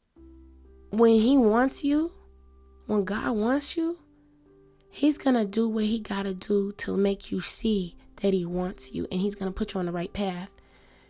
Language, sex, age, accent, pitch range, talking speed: English, female, 20-39, American, 165-210 Hz, 190 wpm